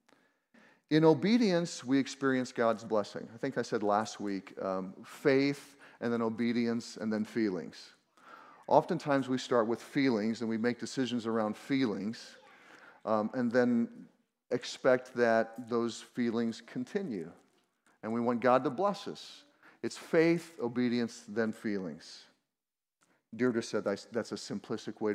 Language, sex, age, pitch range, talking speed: English, male, 40-59, 110-150 Hz, 135 wpm